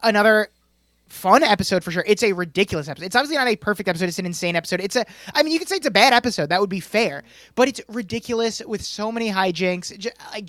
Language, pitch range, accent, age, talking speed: English, 170-230 Hz, American, 20-39, 240 wpm